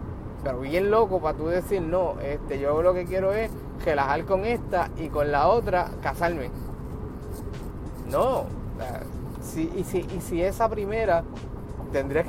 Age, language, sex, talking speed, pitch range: 30-49, Spanish, male, 130 wpm, 135-185 Hz